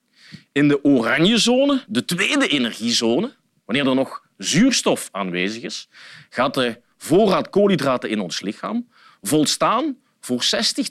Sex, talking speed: male, 125 wpm